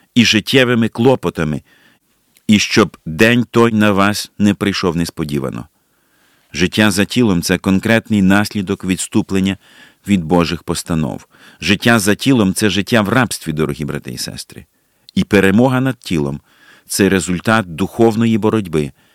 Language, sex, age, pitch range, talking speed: Ukrainian, male, 50-69, 95-115 Hz, 140 wpm